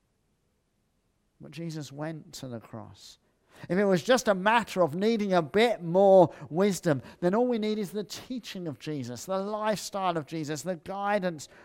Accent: British